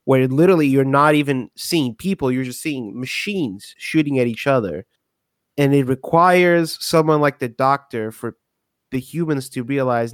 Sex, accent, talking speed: male, American, 160 wpm